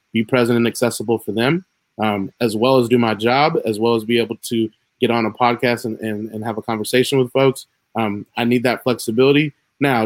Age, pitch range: 20-39, 110-125 Hz